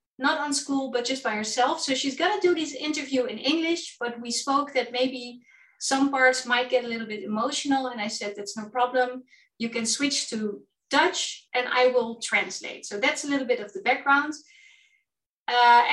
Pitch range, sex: 230-275 Hz, female